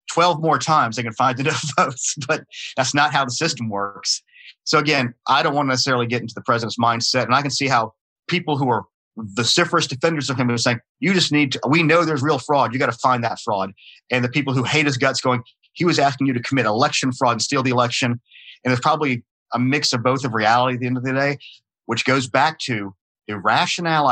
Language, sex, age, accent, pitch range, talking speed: English, male, 40-59, American, 120-145 Hz, 240 wpm